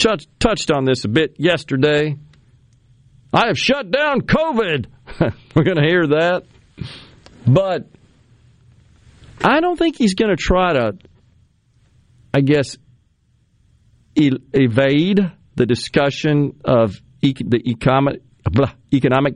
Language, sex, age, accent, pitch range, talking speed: English, male, 50-69, American, 120-180 Hz, 100 wpm